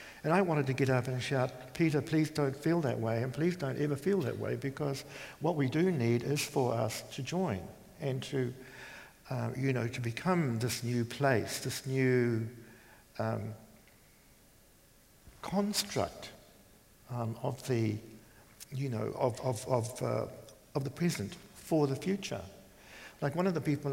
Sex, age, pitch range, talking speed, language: male, 60-79, 115-145 Hz, 165 wpm, English